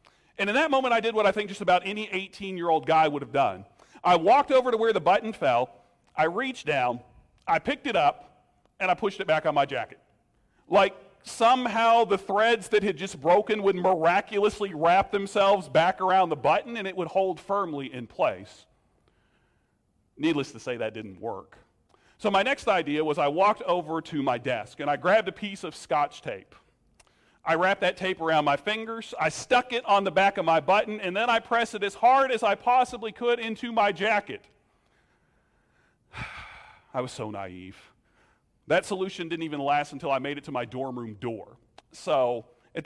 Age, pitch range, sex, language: 40-59, 150-215 Hz, male, English